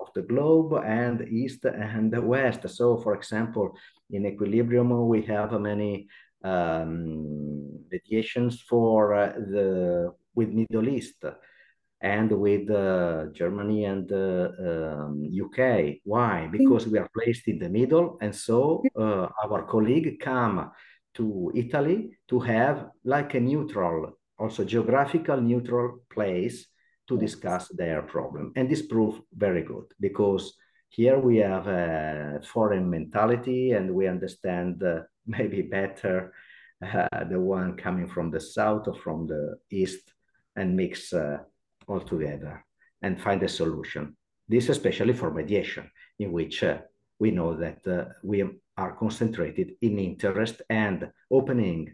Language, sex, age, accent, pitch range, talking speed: English, male, 50-69, Italian, 90-120 Hz, 135 wpm